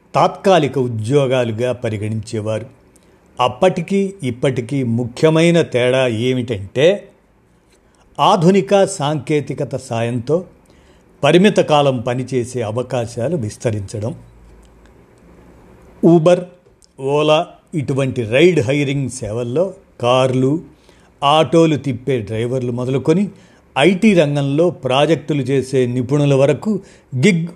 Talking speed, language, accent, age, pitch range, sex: 75 wpm, Telugu, native, 50-69, 125-165 Hz, male